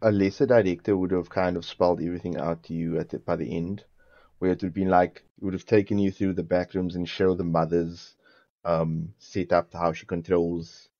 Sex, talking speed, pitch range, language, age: male, 230 wpm, 85-100 Hz, English, 20-39